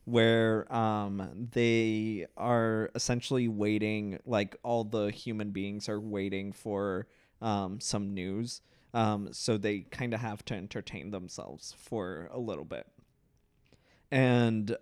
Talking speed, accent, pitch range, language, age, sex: 125 wpm, American, 105-120 Hz, English, 20-39, male